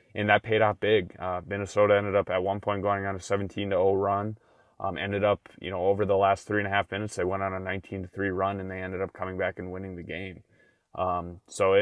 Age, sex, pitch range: 20-39, male, 95-105 Hz